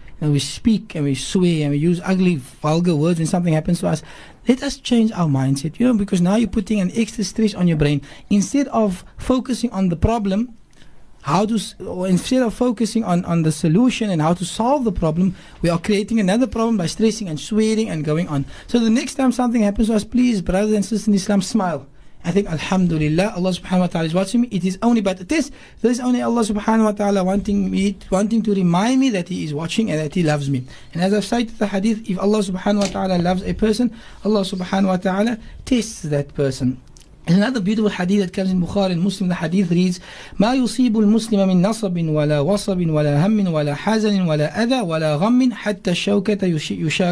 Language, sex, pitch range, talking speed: English, male, 180-225 Hz, 215 wpm